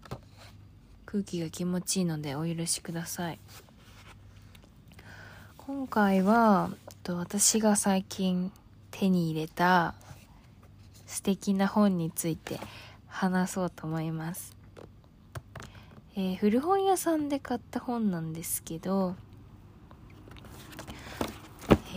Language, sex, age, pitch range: Japanese, female, 20-39, 155-210 Hz